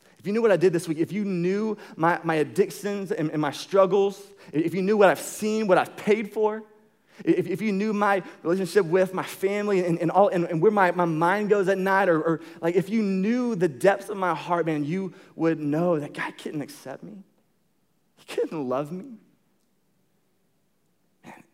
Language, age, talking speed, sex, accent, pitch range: English, 30-49, 205 wpm, male, American, 150-195 Hz